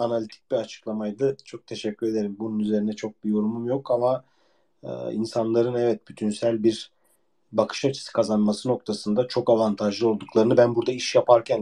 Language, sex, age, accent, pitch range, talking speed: Turkish, male, 40-59, native, 110-140 Hz, 150 wpm